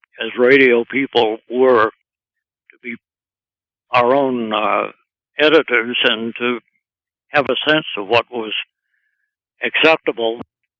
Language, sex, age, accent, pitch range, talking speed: English, male, 60-79, American, 115-140 Hz, 105 wpm